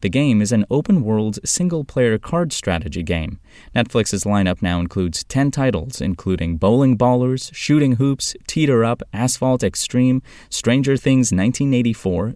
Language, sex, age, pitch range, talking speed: English, male, 20-39, 90-120 Hz, 130 wpm